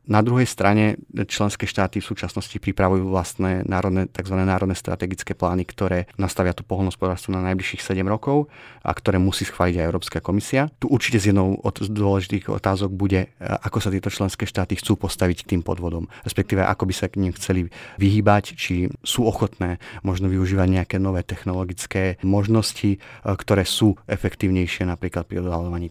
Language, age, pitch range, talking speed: Slovak, 30-49, 90-105 Hz, 160 wpm